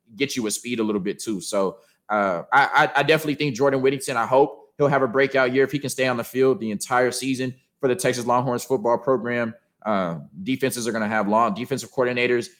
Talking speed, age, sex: 230 wpm, 20-39, male